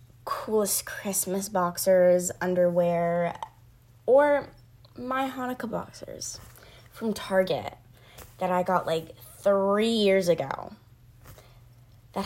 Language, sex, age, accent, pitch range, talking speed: English, female, 20-39, American, 120-180 Hz, 90 wpm